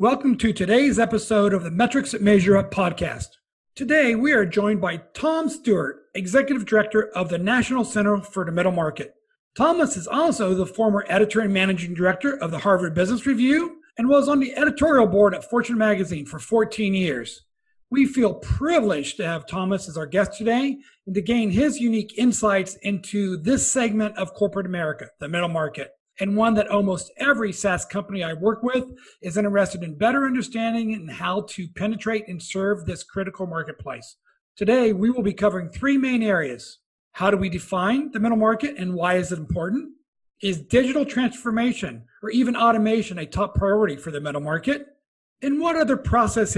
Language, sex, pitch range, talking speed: English, male, 185-240 Hz, 180 wpm